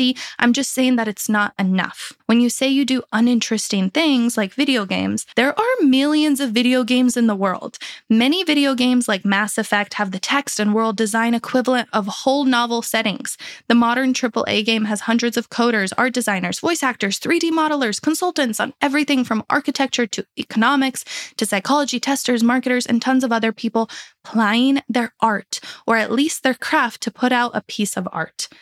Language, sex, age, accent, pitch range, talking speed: English, female, 20-39, American, 205-260 Hz, 185 wpm